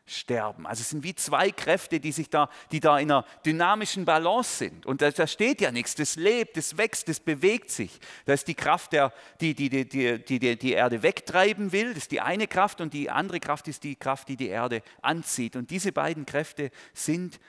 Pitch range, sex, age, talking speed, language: 125-160 Hz, male, 40-59, 225 wpm, German